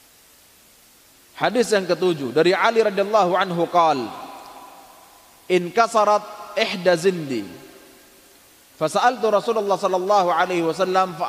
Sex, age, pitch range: male, 30-49, 165-205 Hz